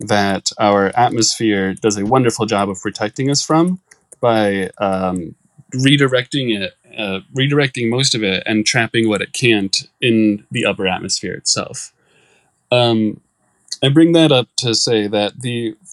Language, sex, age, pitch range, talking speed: English, male, 20-39, 100-125 Hz, 150 wpm